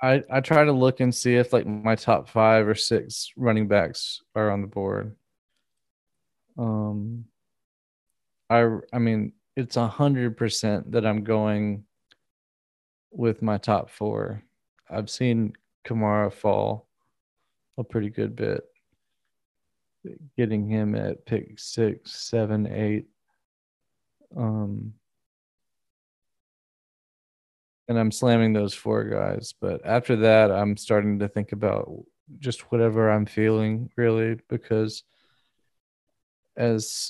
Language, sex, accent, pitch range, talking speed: English, male, American, 105-120 Hz, 115 wpm